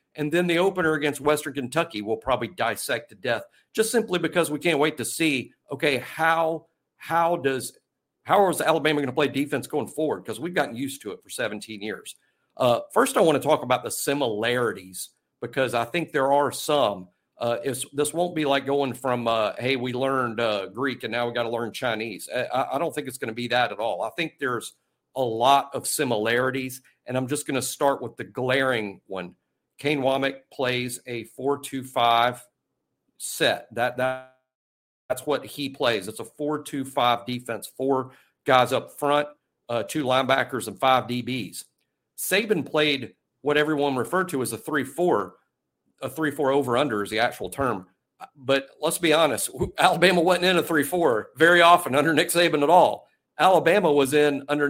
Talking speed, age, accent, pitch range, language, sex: 180 wpm, 50-69, American, 125-150 Hz, English, male